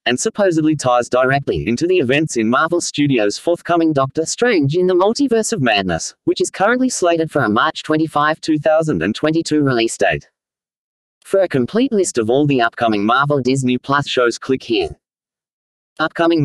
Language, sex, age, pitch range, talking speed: English, male, 30-49, 125-170 Hz, 160 wpm